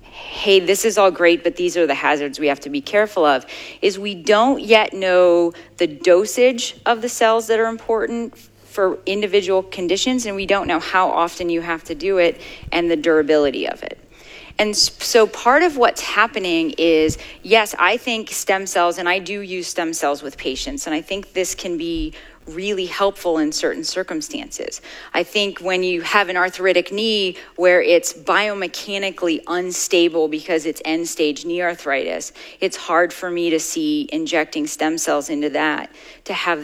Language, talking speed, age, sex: English, 180 wpm, 30-49, female